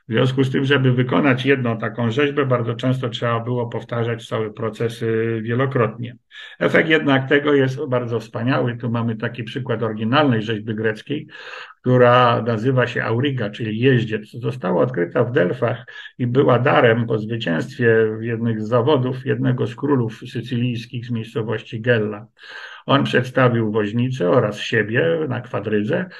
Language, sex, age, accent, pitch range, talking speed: Polish, male, 50-69, native, 115-130 Hz, 145 wpm